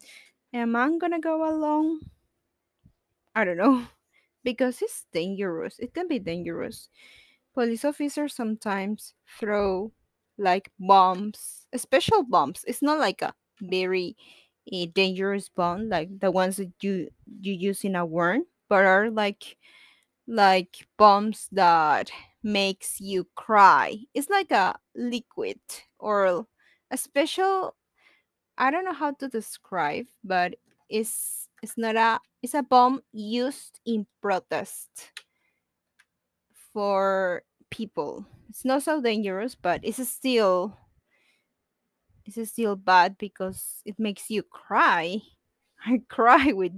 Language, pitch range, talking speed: English, 185-250 Hz, 120 wpm